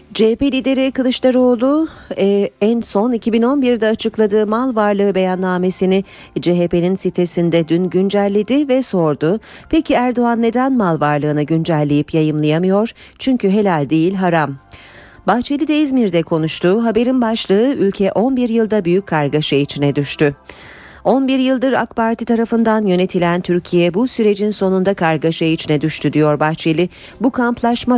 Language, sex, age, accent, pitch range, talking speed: Turkish, female, 40-59, native, 160-220 Hz, 120 wpm